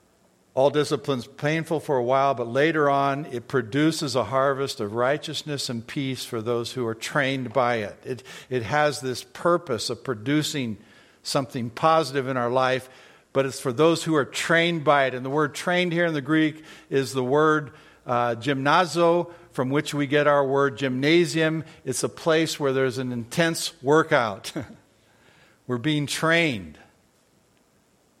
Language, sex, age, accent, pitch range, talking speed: English, male, 60-79, American, 130-155 Hz, 160 wpm